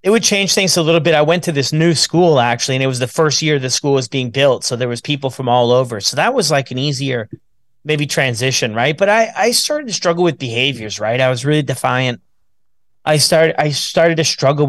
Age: 30-49